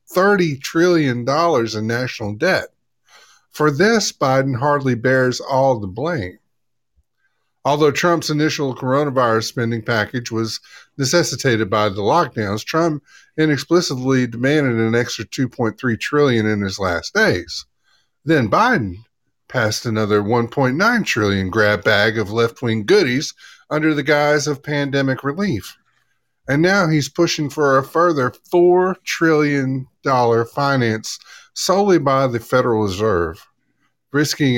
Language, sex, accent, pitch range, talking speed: English, male, American, 115-155 Hz, 120 wpm